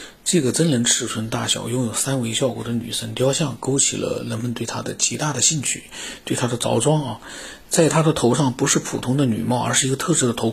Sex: male